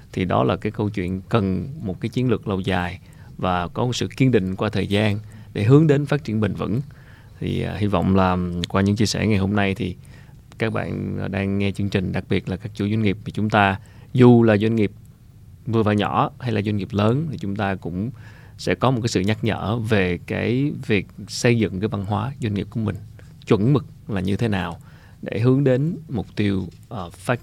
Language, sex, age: Vietnamese, male, 20-39